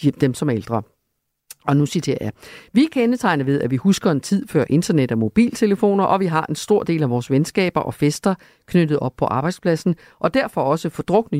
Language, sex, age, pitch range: Danish, female, 50-69, 135-200 Hz